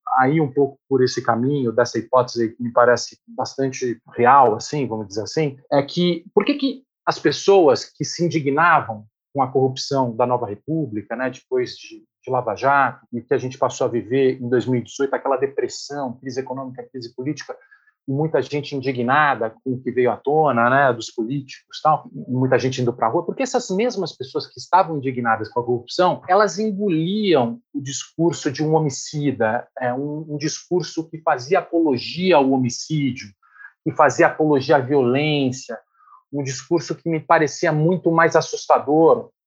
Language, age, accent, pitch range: Portuguese, 40-59, Brazilian, 130-170 Hz